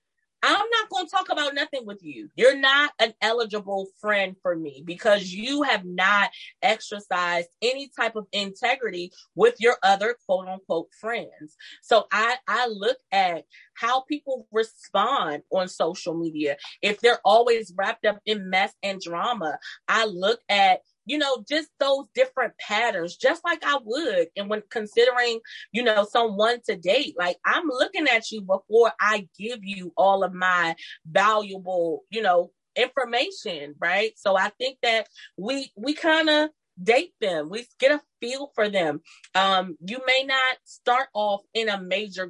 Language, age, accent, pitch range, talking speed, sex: English, 30-49, American, 185-265 Hz, 160 wpm, female